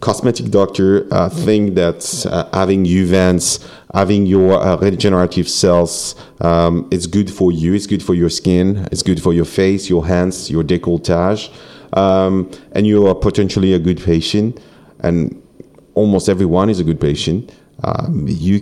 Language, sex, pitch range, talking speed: English, male, 85-100 Hz, 160 wpm